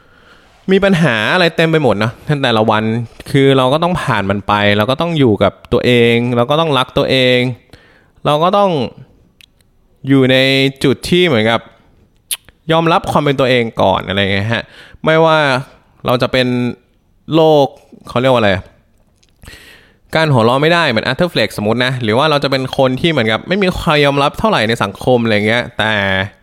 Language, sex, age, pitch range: English, male, 20-39, 110-145 Hz